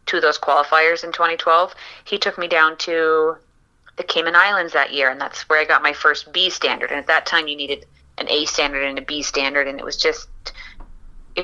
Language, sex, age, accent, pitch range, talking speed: English, female, 30-49, American, 160-200 Hz, 220 wpm